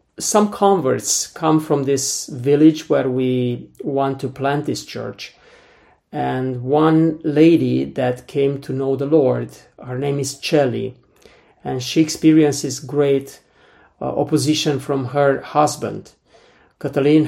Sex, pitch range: male, 135-150 Hz